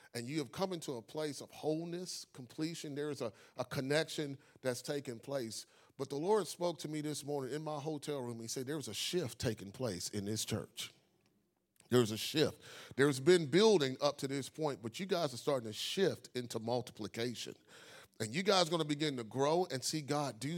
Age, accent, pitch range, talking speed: 40-59, American, 125-165 Hz, 215 wpm